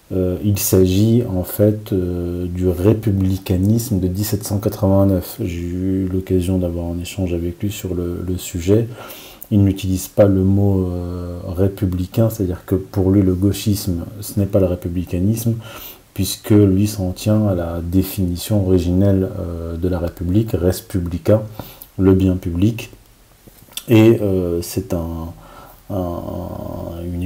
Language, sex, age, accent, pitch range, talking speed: French, male, 40-59, French, 95-110 Hz, 140 wpm